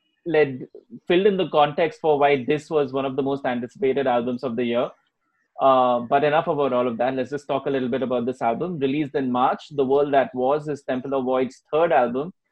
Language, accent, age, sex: English, Indian, 20-39, male